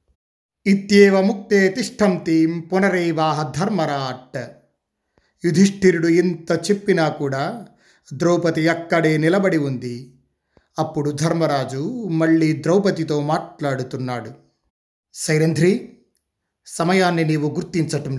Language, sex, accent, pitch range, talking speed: Telugu, male, native, 145-190 Hz, 75 wpm